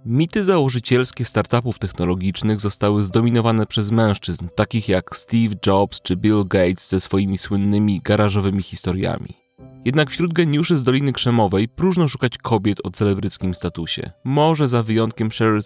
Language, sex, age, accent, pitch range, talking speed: Polish, male, 30-49, native, 100-125 Hz, 140 wpm